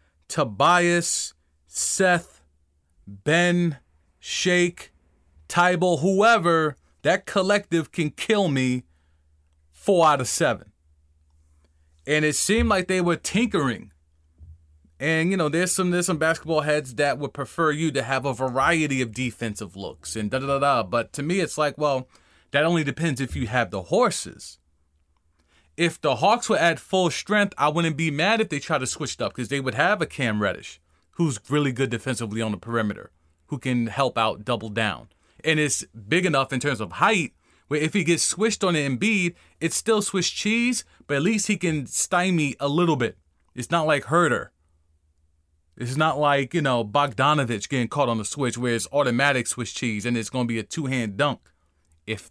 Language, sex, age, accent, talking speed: English, male, 30-49, American, 180 wpm